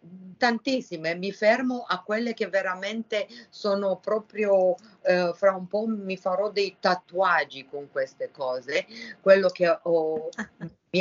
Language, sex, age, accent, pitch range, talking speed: Italian, female, 50-69, native, 180-230 Hz, 130 wpm